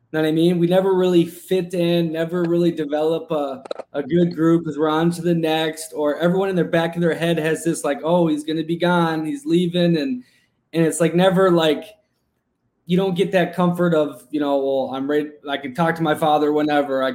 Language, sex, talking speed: English, male, 230 wpm